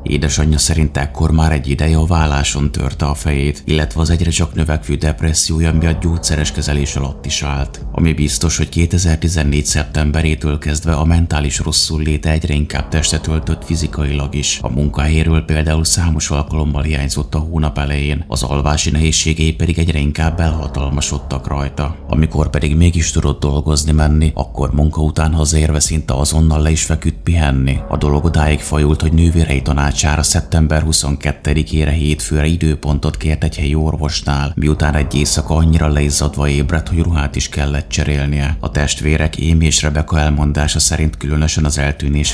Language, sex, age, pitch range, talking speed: Hungarian, male, 30-49, 75-80 Hz, 155 wpm